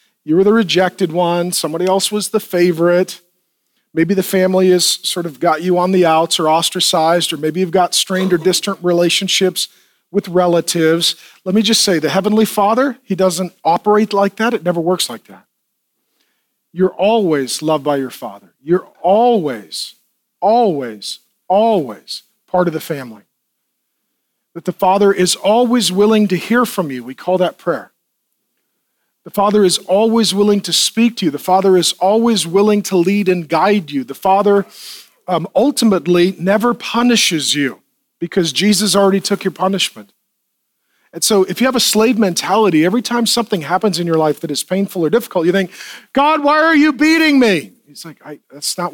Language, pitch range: English, 170-210 Hz